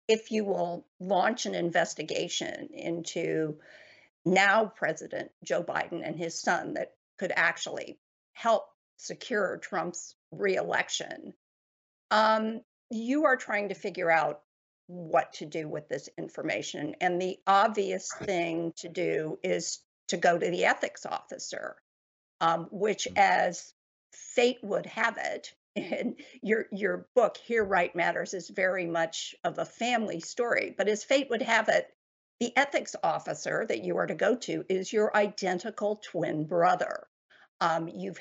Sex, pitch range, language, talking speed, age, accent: female, 175-235 Hz, English, 140 wpm, 50-69, American